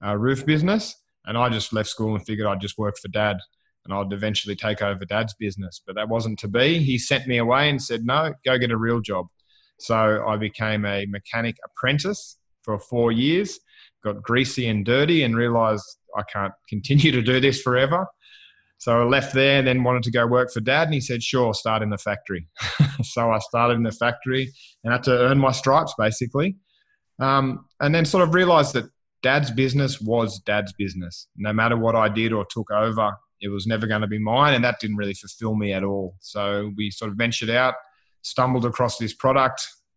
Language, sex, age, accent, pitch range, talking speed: English, male, 20-39, Australian, 110-135 Hz, 205 wpm